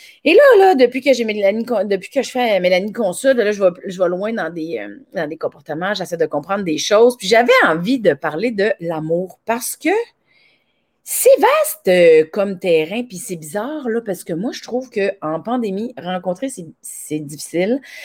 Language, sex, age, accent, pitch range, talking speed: French, female, 30-49, Canadian, 180-260 Hz, 195 wpm